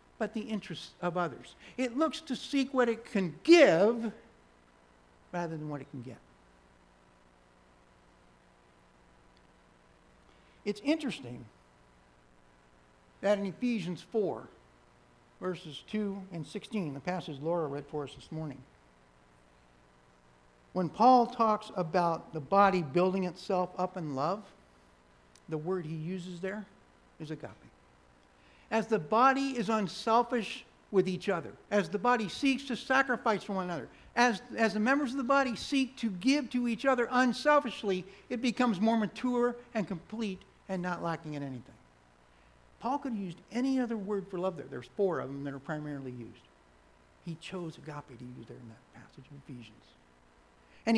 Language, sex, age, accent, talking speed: English, male, 60-79, American, 150 wpm